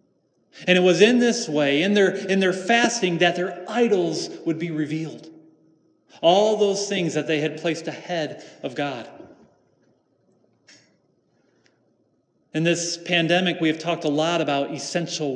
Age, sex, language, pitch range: 40-59, male, English, 150-180 Hz